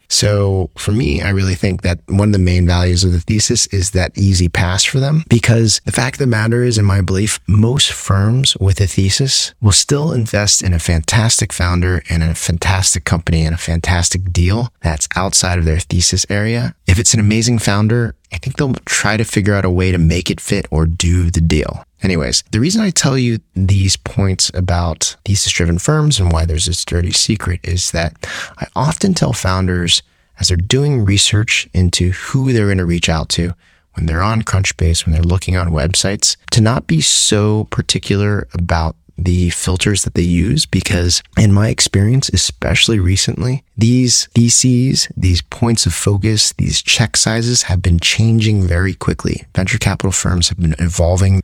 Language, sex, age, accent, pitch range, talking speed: English, male, 30-49, American, 85-110 Hz, 185 wpm